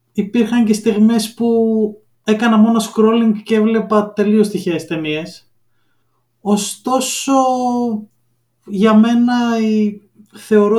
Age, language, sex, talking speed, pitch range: 20-39, Greek, male, 90 wpm, 170-220 Hz